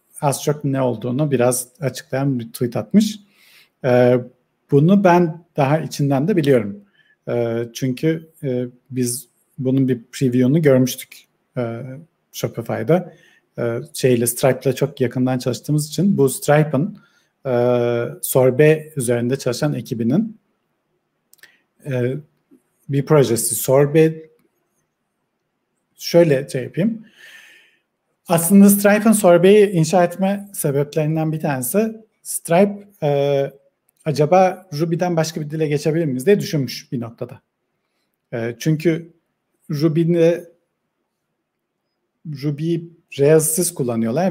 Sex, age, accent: male, 50-69, native